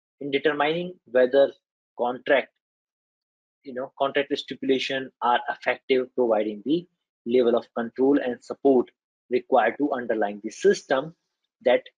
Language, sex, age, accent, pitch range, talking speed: English, male, 30-49, Indian, 125-165 Hz, 115 wpm